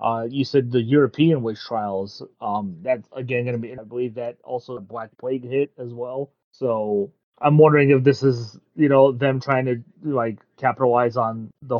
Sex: male